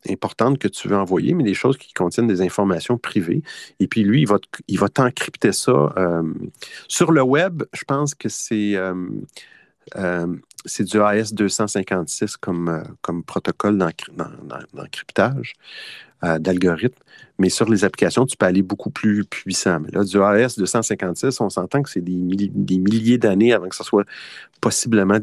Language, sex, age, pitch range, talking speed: French, male, 40-59, 95-120 Hz, 160 wpm